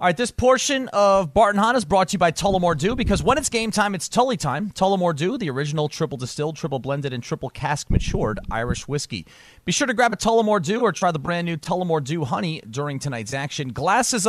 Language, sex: English, male